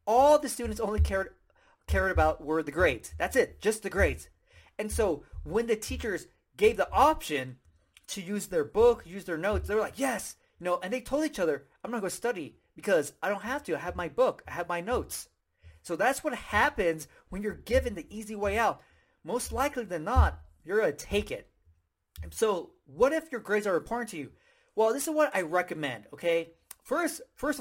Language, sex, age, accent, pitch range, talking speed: English, male, 30-49, American, 165-250 Hz, 215 wpm